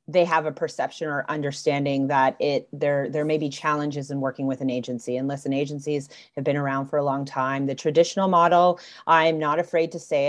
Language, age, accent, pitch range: English, 30-49, American, 145-175 Hz